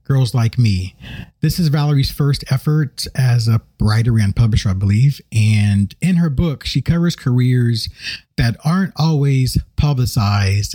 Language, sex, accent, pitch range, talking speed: English, male, American, 100-125 Hz, 145 wpm